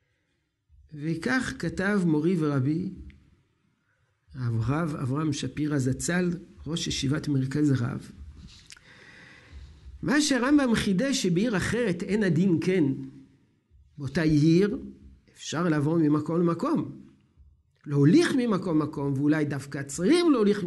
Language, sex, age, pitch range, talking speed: Hebrew, male, 60-79, 140-180 Hz, 100 wpm